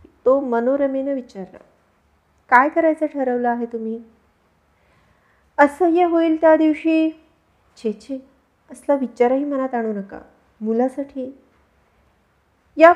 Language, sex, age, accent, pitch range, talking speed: Marathi, female, 30-49, native, 235-285 Hz, 50 wpm